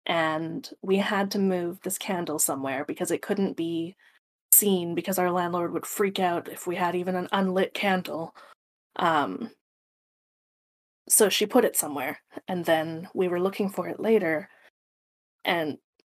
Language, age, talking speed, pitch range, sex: English, 20-39, 155 wpm, 175-200 Hz, female